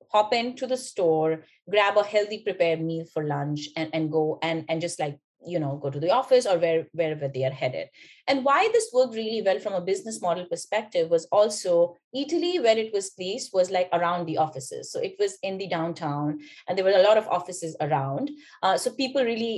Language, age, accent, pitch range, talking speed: English, 30-49, Indian, 165-255 Hz, 220 wpm